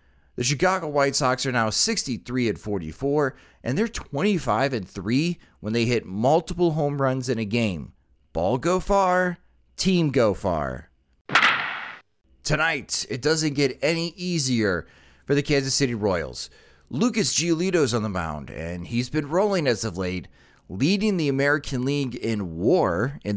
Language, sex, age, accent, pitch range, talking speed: English, male, 30-49, American, 105-150 Hz, 145 wpm